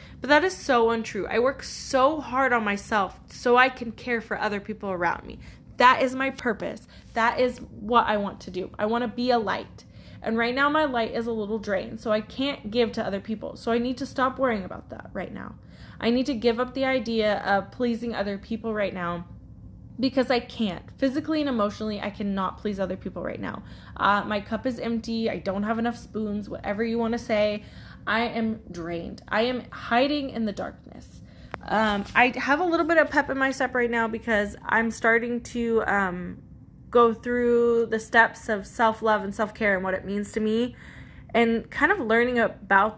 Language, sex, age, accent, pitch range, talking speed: English, female, 10-29, American, 210-255 Hz, 210 wpm